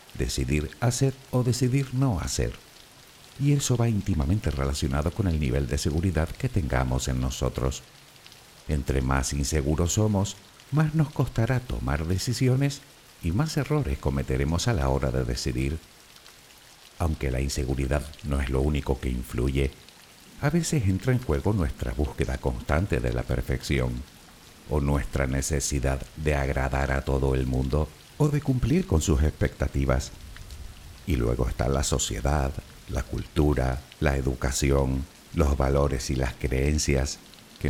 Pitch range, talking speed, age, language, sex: 65-100 Hz, 140 wpm, 60-79, Spanish, male